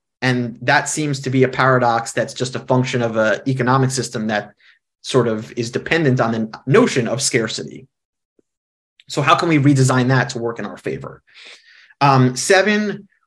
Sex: male